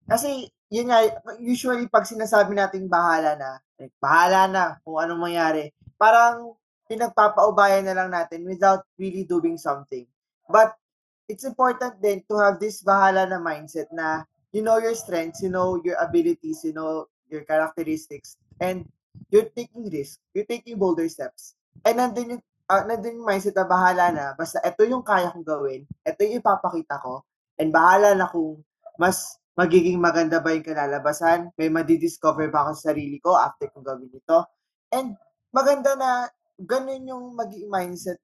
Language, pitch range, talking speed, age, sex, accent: Filipino, 160-225 Hz, 155 wpm, 20-39, male, native